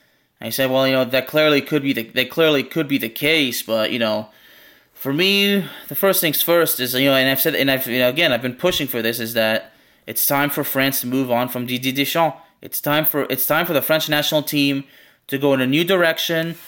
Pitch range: 130-155 Hz